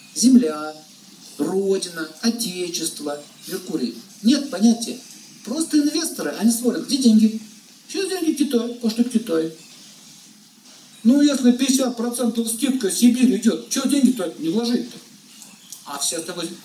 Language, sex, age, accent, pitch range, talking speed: Russian, male, 50-69, native, 200-245 Hz, 120 wpm